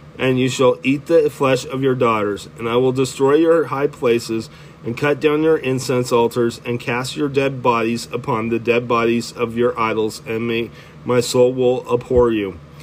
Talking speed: 185 wpm